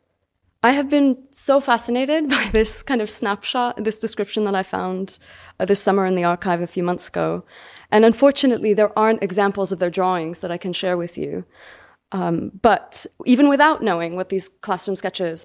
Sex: female